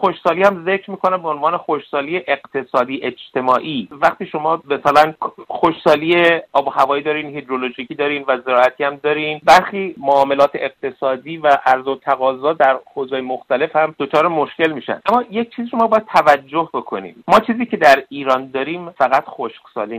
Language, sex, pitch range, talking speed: Persian, male, 120-155 Hz, 155 wpm